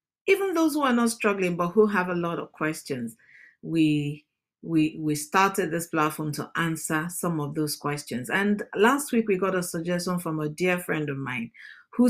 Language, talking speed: English, 195 wpm